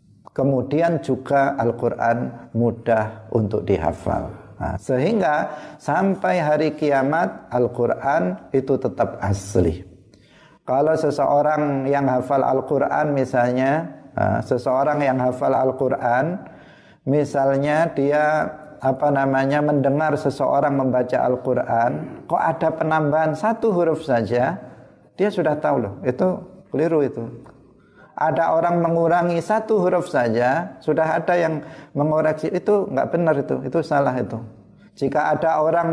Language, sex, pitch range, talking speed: Indonesian, male, 130-165 Hz, 110 wpm